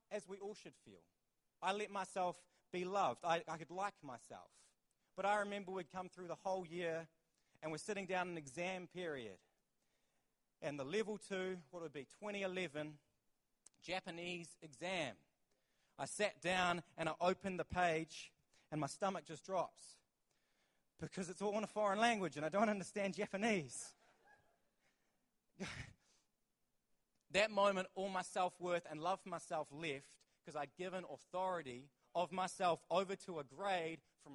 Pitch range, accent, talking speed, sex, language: 150-195 Hz, Australian, 150 wpm, male, English